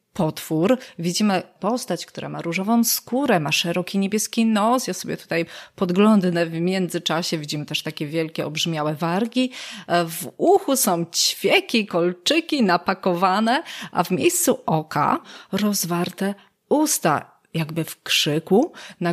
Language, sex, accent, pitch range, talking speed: Polish, female, native, 170-215 Hz, 120 wpm